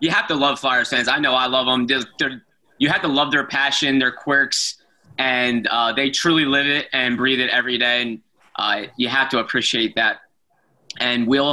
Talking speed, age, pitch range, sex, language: 215 wpm, 20-39, 120-140 Hz, male, English